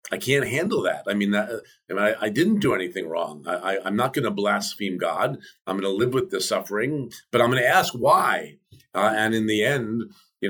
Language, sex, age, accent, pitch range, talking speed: English, male, 50-69, American, 105-140 Hz, 240 wpm